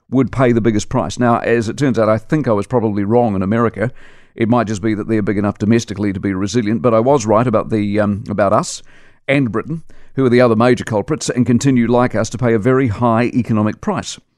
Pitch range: 115-150 Hz